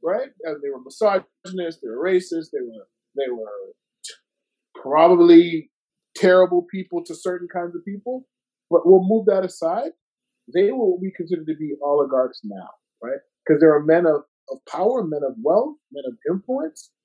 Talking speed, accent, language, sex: 165 wpm, American, English, male